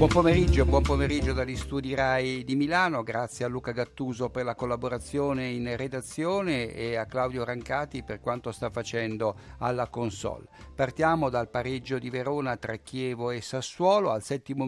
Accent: native